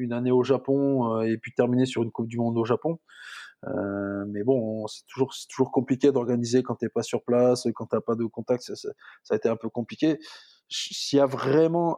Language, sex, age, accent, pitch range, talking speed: French, male, 20-39, French, 115-135 Hz, 230 wpm